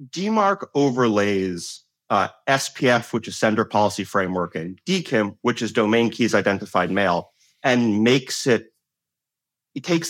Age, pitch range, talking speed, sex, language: 30-49, 100-130 Hz, 130 wpm, male, English